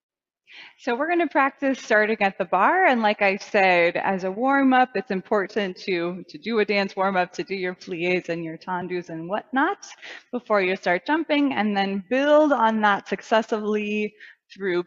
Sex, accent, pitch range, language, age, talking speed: female, American, 190-270 Hz, English, 20-39, 180 wpm